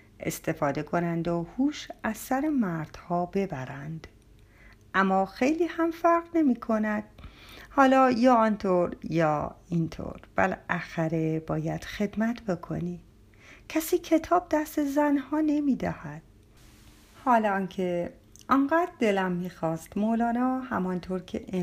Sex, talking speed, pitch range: female, 105 wpm, 155-250 Hz